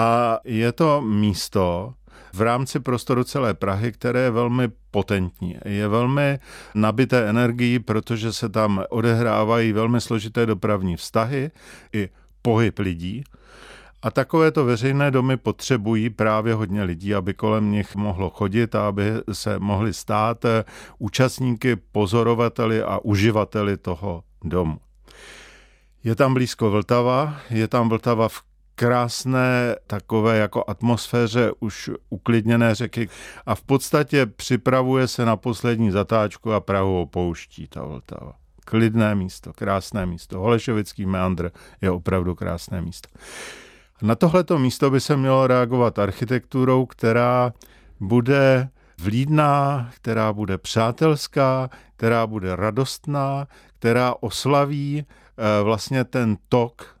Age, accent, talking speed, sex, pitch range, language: 50-69, native, 120 wpm, male, 105-125 Hz, Czech